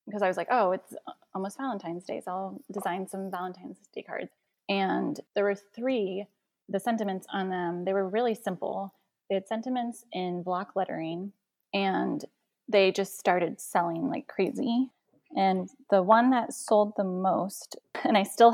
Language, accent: English, American